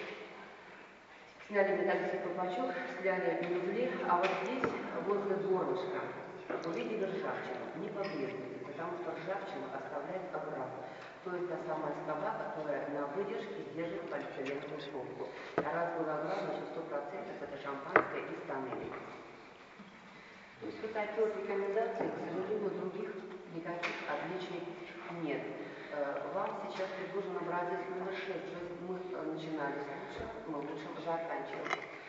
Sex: female